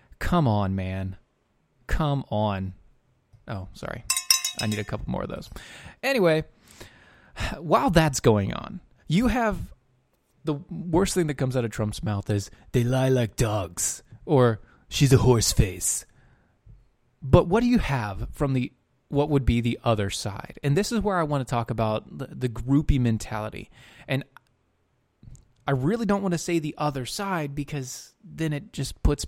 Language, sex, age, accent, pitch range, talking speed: English, male, 20-39, American, 110-150 Hz, 165 wpm